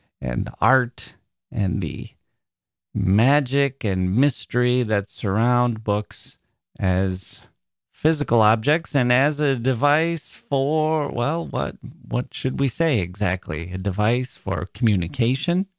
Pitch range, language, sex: 95-130 Hz, English, male